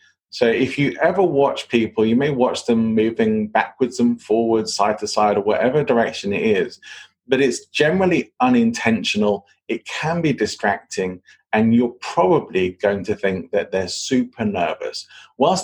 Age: 30-49